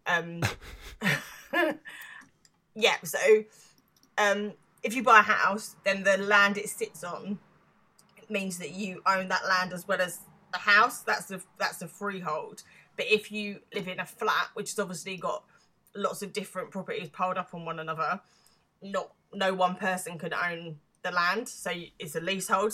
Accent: British